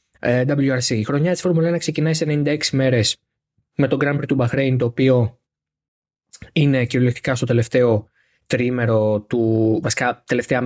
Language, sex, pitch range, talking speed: Greek, male, 110-145 Hz, 135 wpm